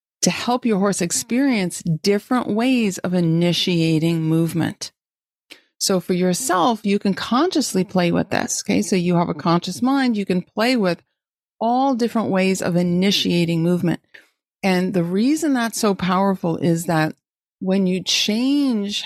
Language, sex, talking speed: English, female, 150 wpm